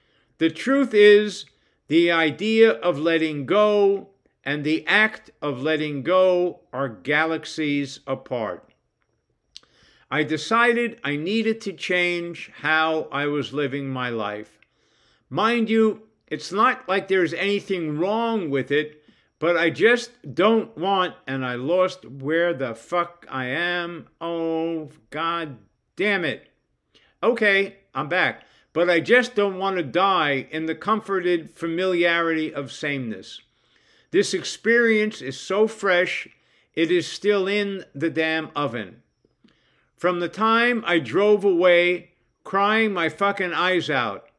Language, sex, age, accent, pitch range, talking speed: English, male, 60-79, American, 150-195 Hz, 130 wpm